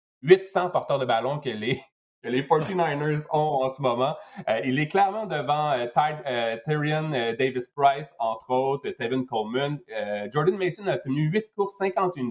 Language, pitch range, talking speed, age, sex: French, 125-175 Hz, 170 wpm, 30-49, male